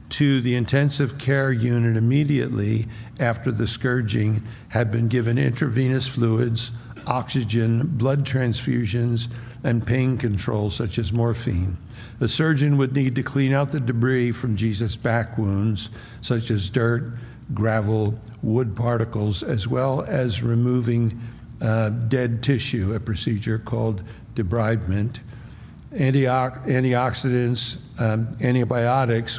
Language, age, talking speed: English, 60-79, 115 wpm